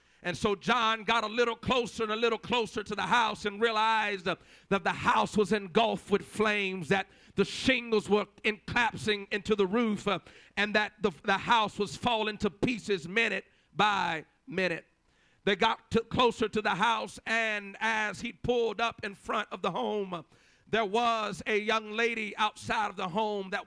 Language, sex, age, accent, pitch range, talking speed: English, male, 50-69, American, 205-230 Hz, 185 wpm